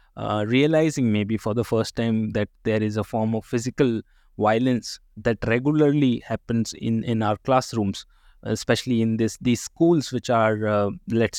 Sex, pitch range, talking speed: male, 115-145 Hz, 165 wpm